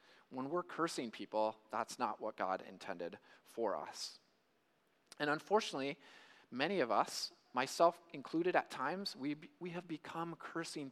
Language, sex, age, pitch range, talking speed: English, male, 30-49, 135-195 Hz, 135 wpm